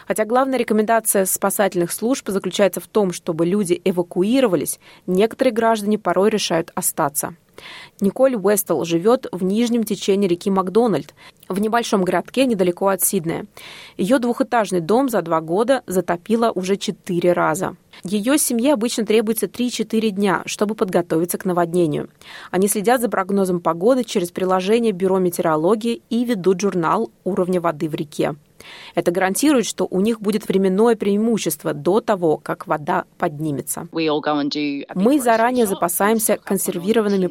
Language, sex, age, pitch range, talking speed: Russian, female, 20-39, 175-220 Hz, 135 wpm